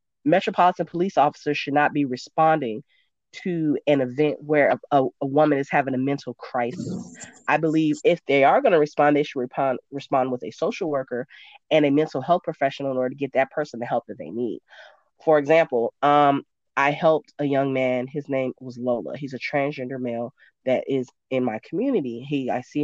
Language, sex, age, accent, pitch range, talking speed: English, female, 20-39, American, 135-160 Hz, 200 wpm